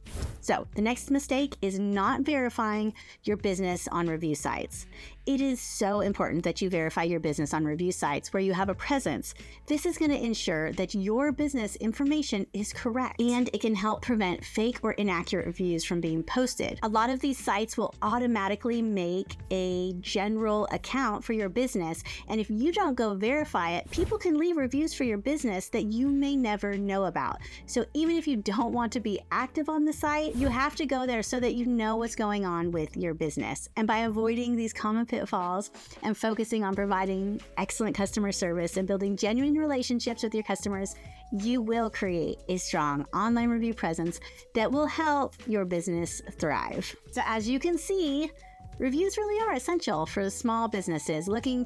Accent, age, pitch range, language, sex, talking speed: American, 30-49, 195-260 Hz, English, female, 185 wpm